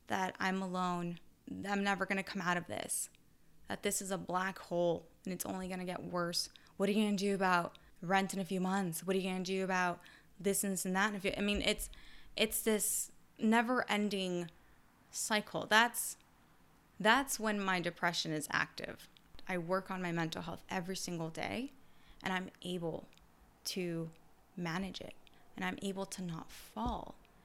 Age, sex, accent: 20-39, female, American